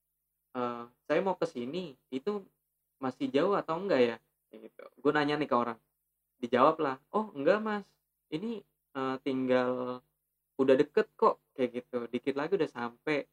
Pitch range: 125-150 Hz